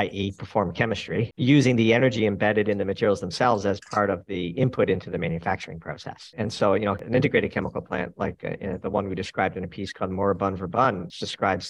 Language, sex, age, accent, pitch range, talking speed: English, male, 50-69, American, 95-115 Hz, 220 wpm